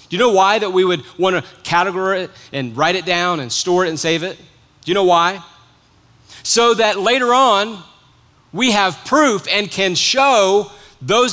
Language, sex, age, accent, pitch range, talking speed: English, male, 40-59, American, 140-185 Hz, 190 wpm